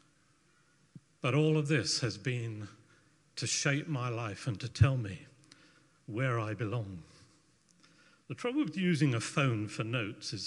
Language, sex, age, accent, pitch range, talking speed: English, male, 50-69, British, 125-160 Hz, 150 wpm